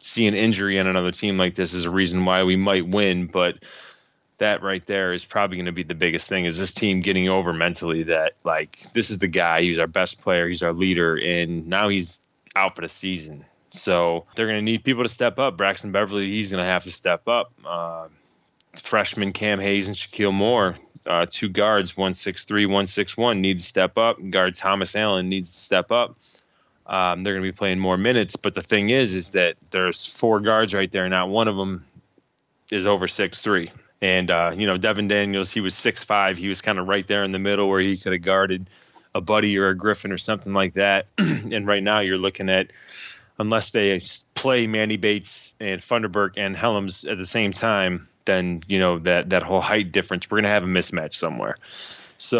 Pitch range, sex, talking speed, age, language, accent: 90-105 Hz, male, 220 wpm, 20-39, English, American